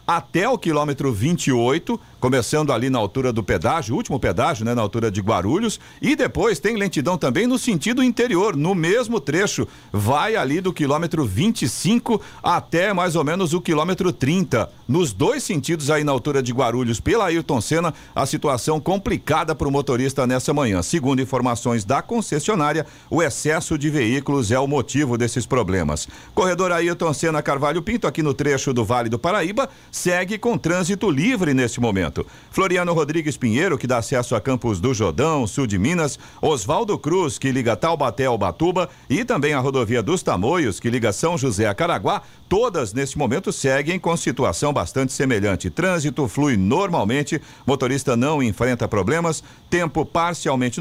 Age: 50-69